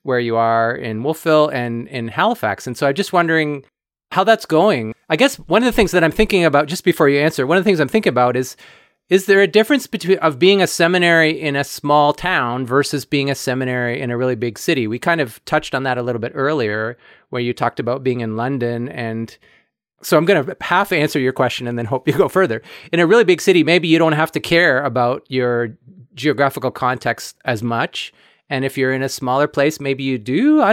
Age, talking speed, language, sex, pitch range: 30-49, 230 wpm, English, male, 125-170 Hz